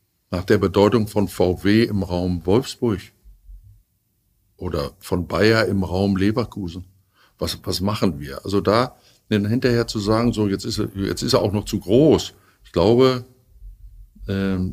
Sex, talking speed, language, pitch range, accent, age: male, 150 wpm, German, 90-110 Hz, German, 50-69